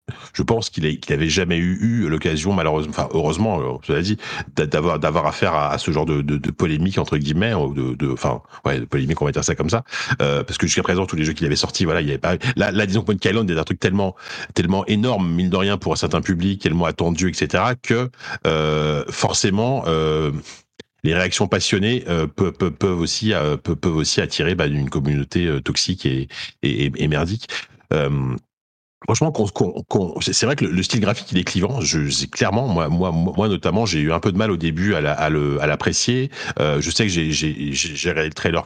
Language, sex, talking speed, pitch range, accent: French, male, 230 wpm, 75-100 Hz, French